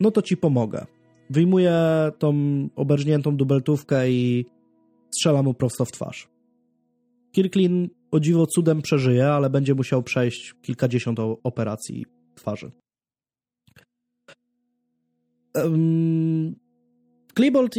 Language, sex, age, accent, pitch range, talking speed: Polish, male, 20-39, native, 130-190 Hz, 90 wpm